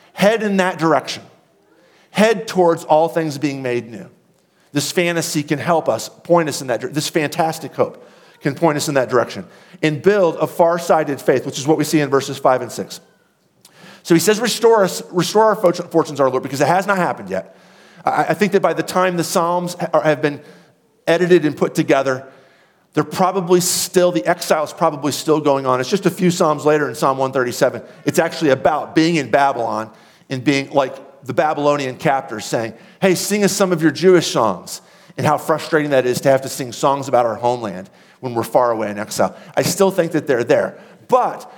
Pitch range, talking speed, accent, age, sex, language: 140-180 Hz, 205 wpm, American, 40-59, male, English